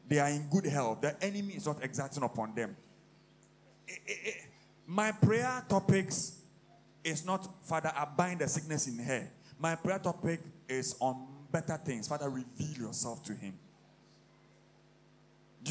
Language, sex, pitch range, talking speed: English, male, 145-185 Hz, 155 wpm